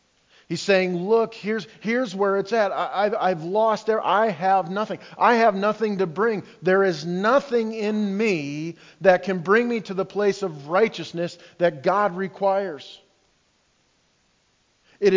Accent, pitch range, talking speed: American, 155-205 Hz, 150 wpm